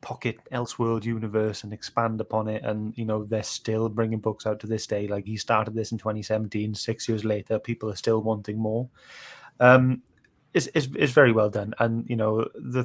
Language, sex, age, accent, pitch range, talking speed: English, male, 20-39, British, 105-120 Hz, 195 wpm